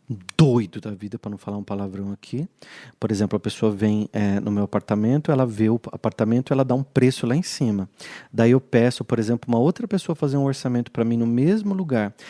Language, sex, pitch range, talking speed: Portuguese, male, 120-165 Hz, 220 wpm